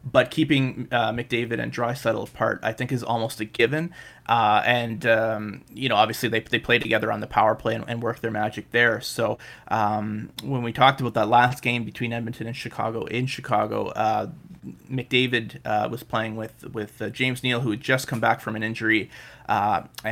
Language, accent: English, American